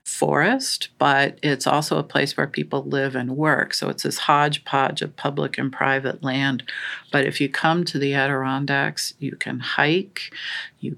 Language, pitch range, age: English, 130-160 Hz, 50-69